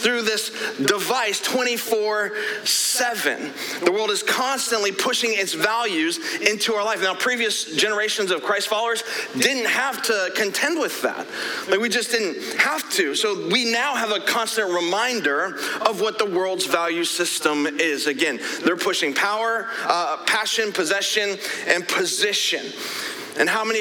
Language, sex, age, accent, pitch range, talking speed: English, male, 30-49, American, 205-255 Hz, 145 wpm